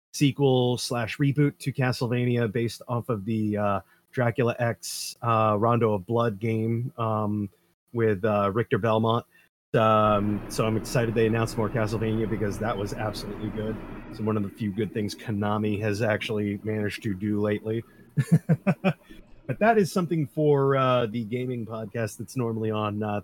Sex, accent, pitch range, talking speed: male, American, 110-130 Hz, 160 wpm